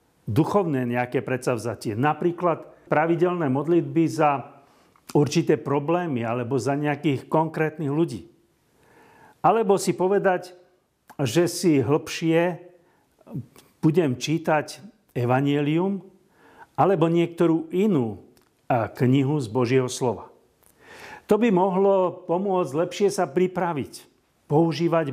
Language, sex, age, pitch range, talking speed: Slovak, male, 50-69, 140-180 Hz, 90 wpm